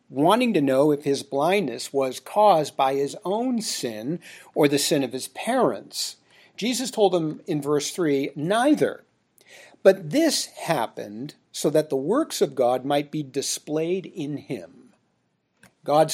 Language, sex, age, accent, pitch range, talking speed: English, male, 50-69, American, 140-230 Hz, 150 wpm